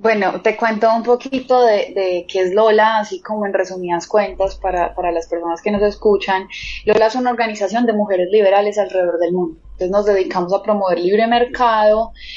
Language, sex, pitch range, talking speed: Spanish, female, 175-215 Hz, 190 wpm